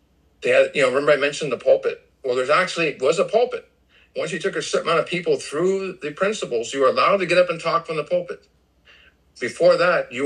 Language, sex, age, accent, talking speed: English, male, 50-69, American, 235 wpm